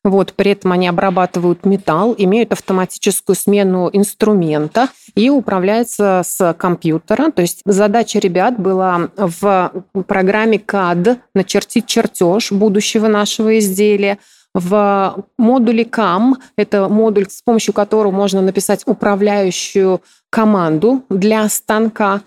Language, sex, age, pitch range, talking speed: Russian, female, 30-49, 185-220 Hz, 110 wpm